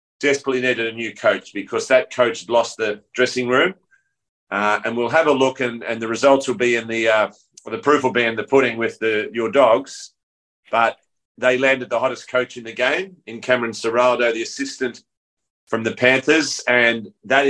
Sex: male